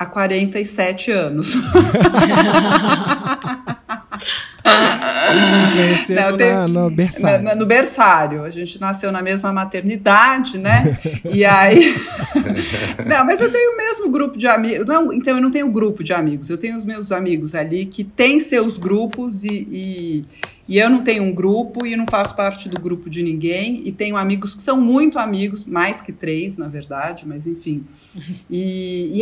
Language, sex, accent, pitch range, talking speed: Portuguese, female, Brazilian, 185-255 Hz, 160 wpm